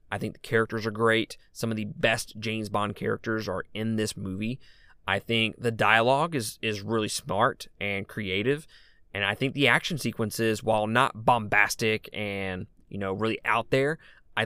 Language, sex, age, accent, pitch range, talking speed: English, male, 20-39, American, 100-120 Hz, 180 wpm